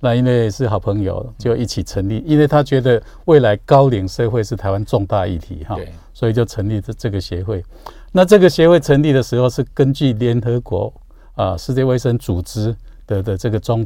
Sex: male